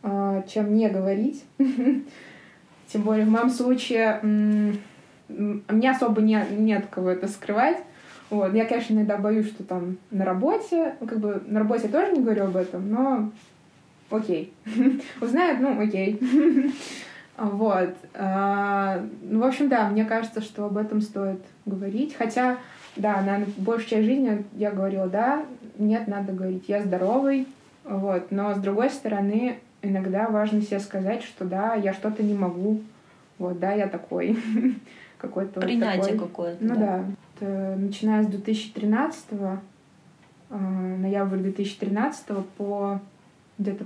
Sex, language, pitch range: female, Russian, 195-225 Hz